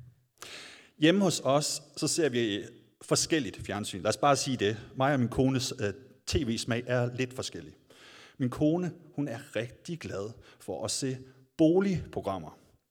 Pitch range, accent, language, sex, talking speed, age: 115-150 Hz, native, Danish, male, 150 wpm, 30-49